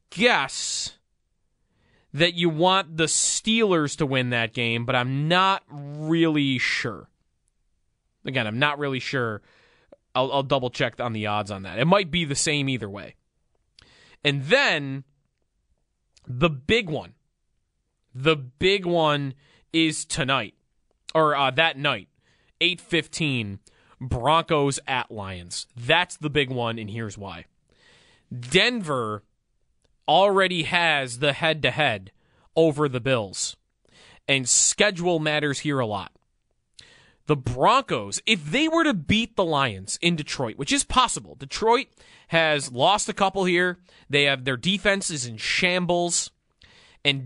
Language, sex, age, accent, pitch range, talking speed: English, male, 30-49, American, 125-180 Hz, 130 wpm